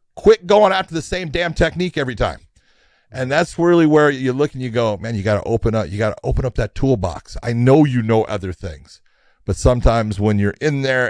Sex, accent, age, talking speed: male, American, 40-59, 230 wpm